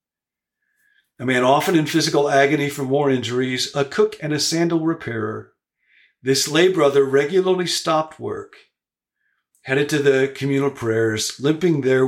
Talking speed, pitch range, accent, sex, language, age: 140 wpm, 115-150 Hz, American, male, English, 50-69